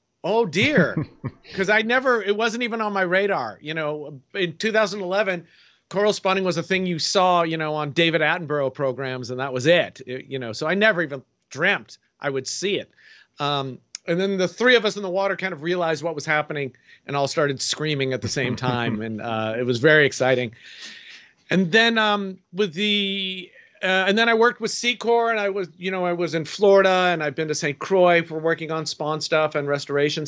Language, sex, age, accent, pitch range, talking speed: English, male, 40-59, American, 150-190 Hz, 215 wpm